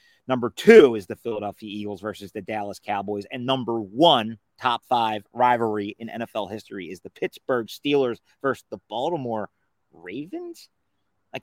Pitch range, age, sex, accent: 110-135 Hz, 30-49, male, American